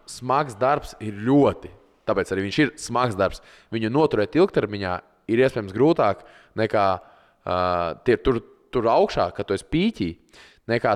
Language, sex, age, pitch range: English, male, 20-39, 95-135 Hz